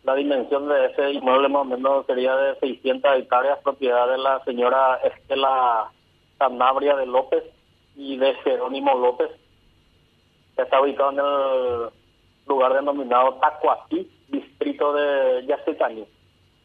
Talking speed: 125 wpm